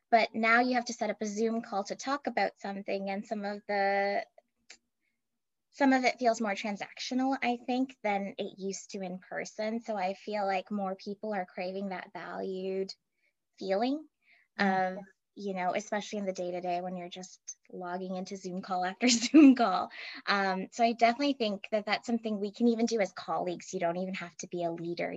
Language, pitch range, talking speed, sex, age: English, 175-210 Hz, 200 wpm, female, 20-39